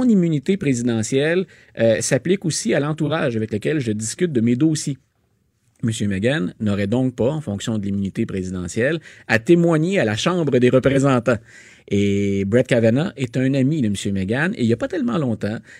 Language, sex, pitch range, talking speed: French, male, 110-150 Hz, 180 wpm